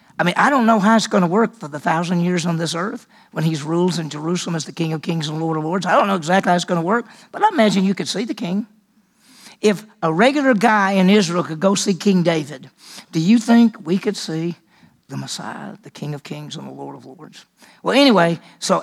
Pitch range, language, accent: 170-220 Hz, English, American